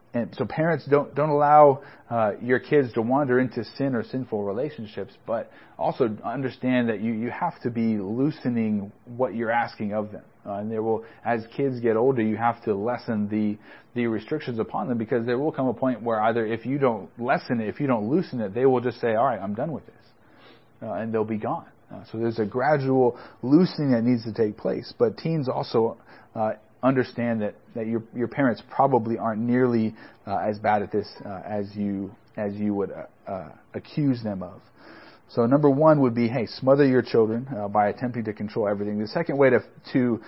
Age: 40-59